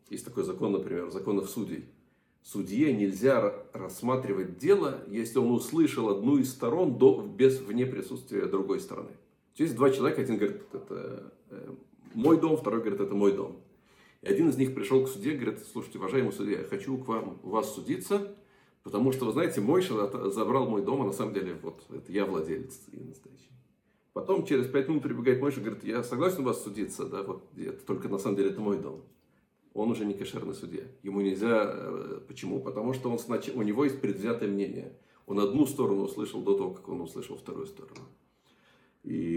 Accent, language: native, Russian